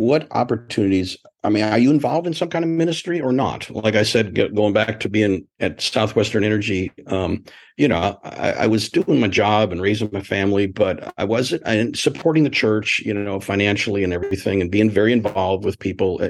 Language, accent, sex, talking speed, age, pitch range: English, American, male, 200 wpm, 50-69, 105-150 Hz